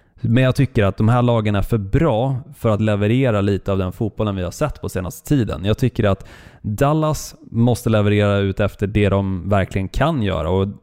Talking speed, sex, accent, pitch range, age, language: 205 wpm, male, native, 95-120 Hz, 20-39, Swedish